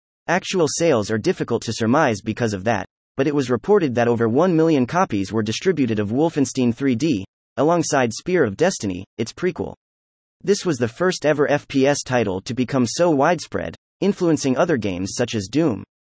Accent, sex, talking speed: American, male, 170 wpm